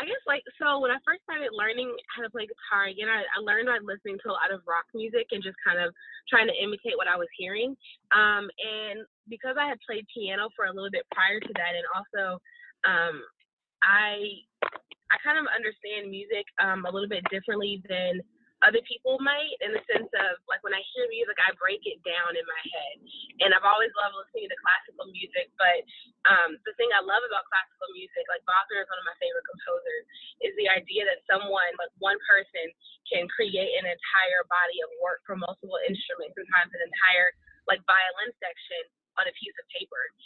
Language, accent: English, American